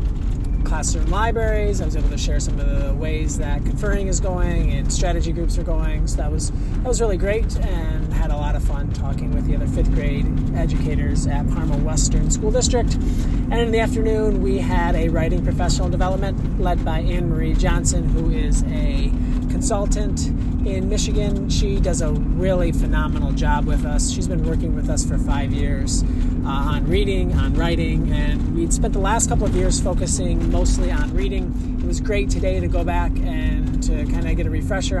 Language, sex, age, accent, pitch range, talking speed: English, male, 30-49, American, 80-85 Hz, 190 wpm